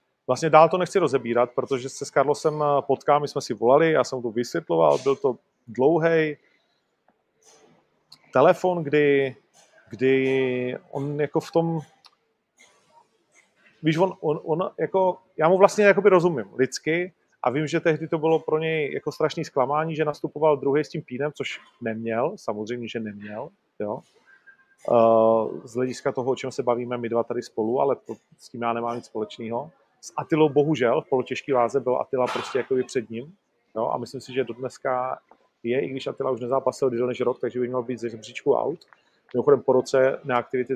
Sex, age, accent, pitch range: male, 30-49, native, 125-155 Hz